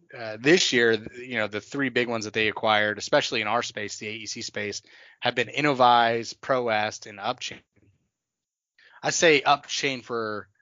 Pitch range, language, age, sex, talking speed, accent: 105-125 Hz, English, 20-39, male, 165 wpm, American